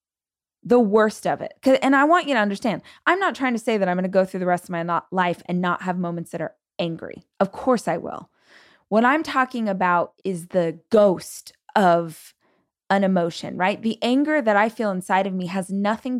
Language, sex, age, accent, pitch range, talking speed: English, female, 20-39, American, 180-240 Hz, 215 wpm